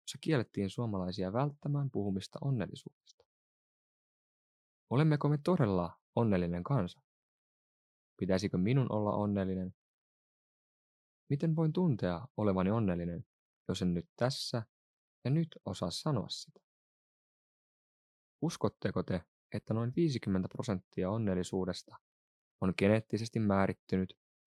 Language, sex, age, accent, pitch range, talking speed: Finnish, male, 20-39, native, 95-120 Hz, 95 wpm